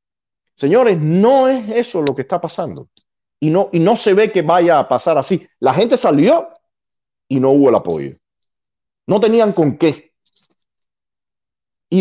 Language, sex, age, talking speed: Spanish, male, 50-69, 155 wpm